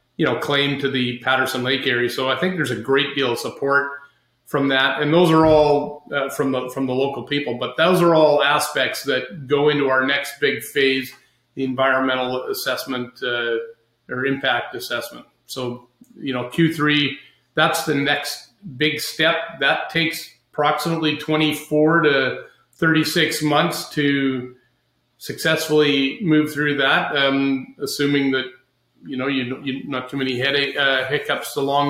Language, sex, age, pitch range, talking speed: English, male, 30-49, 130-155 Hz, 155 wpm